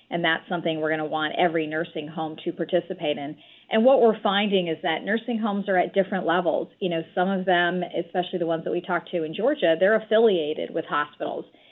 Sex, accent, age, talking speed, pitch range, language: female, American, 40-59, 220 wpm, 160-180 Hz, English